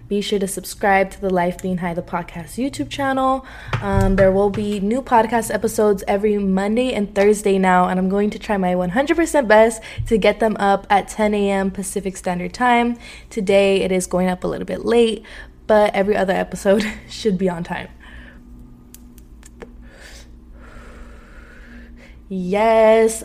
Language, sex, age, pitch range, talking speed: English, female, 20-39, 185-220 Hz, 155 wpm